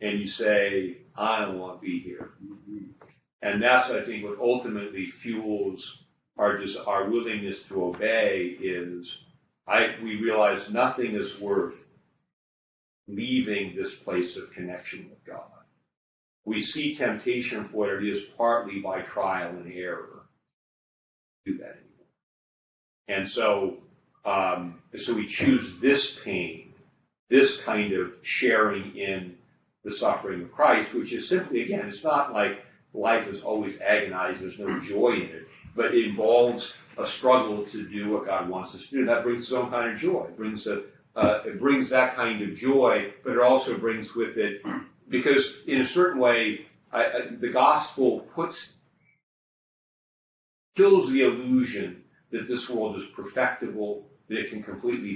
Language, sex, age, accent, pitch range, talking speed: English, male, 40-59, American, 100-130 Hz, 150 wpm